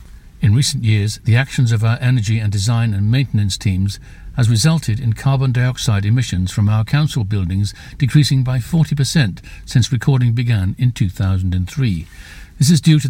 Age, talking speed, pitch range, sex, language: 60-79, 160 wpm, 110-140 Hz, male, English